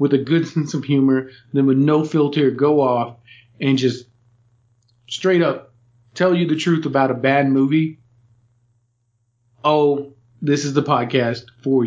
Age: 40-59